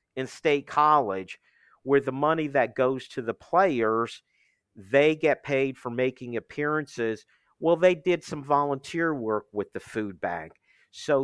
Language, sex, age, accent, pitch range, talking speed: English, male, 50-69, American, 120-150 Hz, 150 wpm